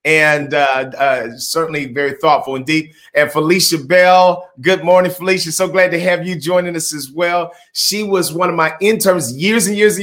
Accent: American